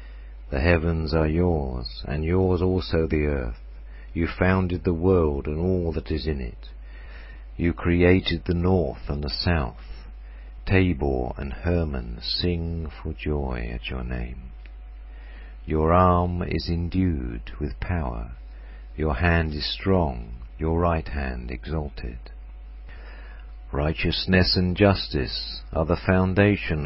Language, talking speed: English, 125 wpm